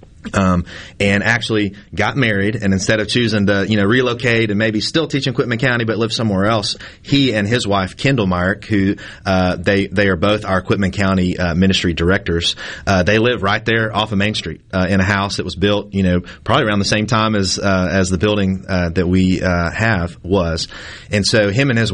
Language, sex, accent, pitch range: English, male, American, 95-105 Hz